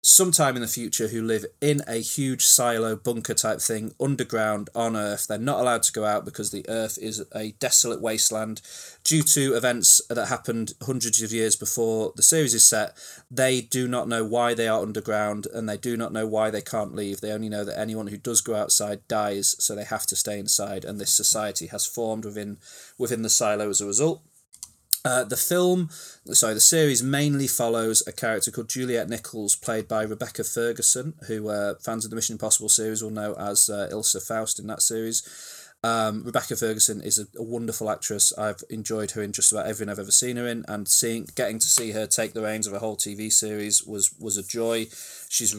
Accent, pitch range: British, 105-120 Hz